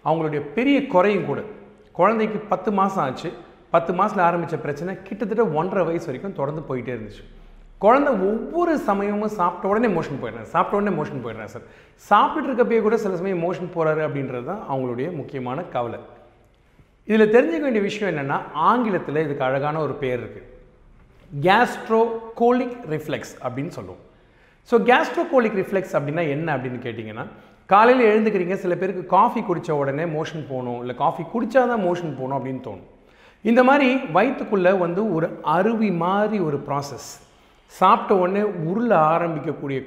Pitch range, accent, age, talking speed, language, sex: 140-215 Hz, native, 40-59, 140 wpm, Tamil, male